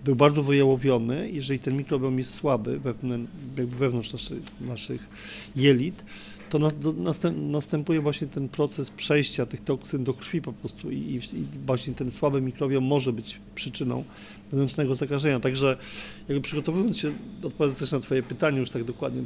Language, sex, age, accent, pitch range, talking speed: Polish, male, 40-59, native, 125-145 Hz, 160 wpm